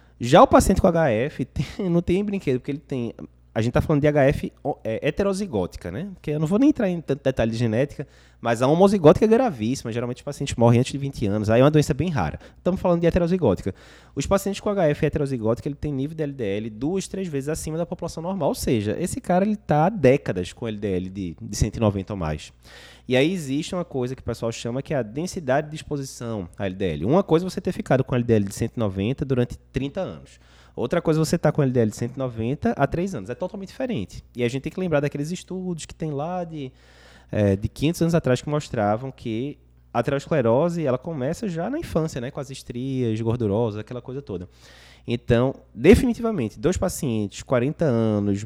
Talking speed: 210 wpm